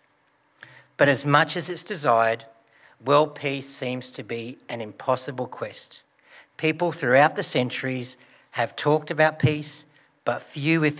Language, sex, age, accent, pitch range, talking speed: English, male, 60-79, Australian, 135-180 Hz, 135 wpm